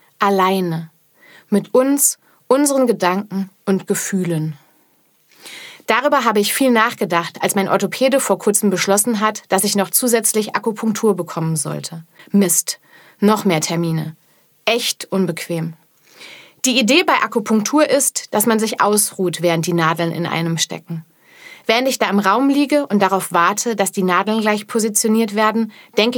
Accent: German